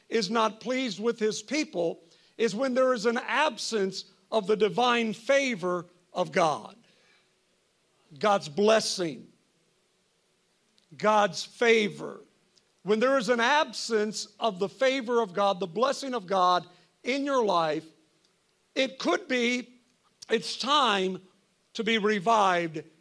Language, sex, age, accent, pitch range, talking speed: English, male, 50-69, American, 200-265 Hz, 125 wpm